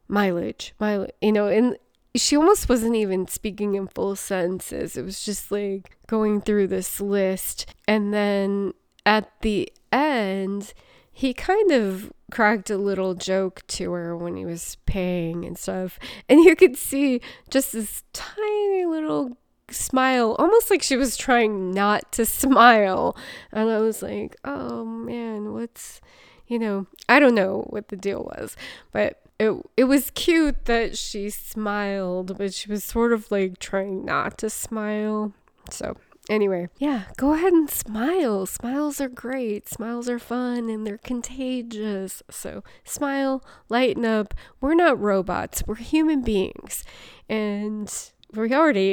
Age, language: 20-39, English